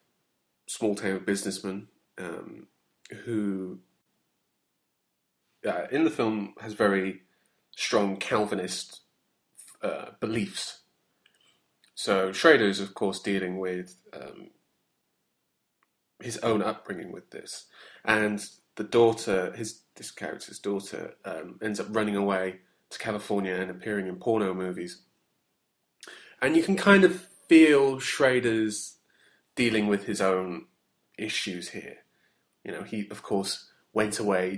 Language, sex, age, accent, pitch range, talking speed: English, male, 30-49, British, 95-110 Hz, 115 wpm